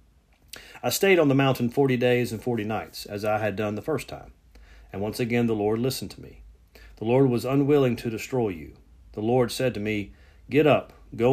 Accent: American